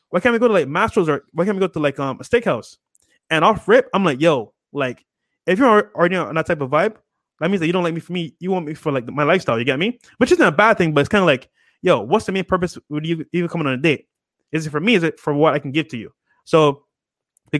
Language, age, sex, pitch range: English, 20-39, male, 155-210 Hz